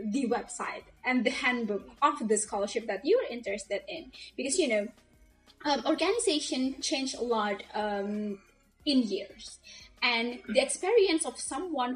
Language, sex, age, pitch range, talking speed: English, female, 10-29, 225-305 Hz, 140 wpm